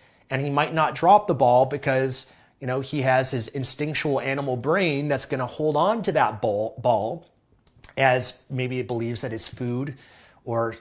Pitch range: 120-150 Hz